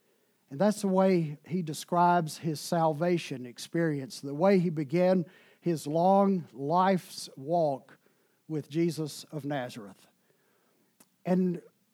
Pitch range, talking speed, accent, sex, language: 145-190 Hz, 110 wpm, American, male, English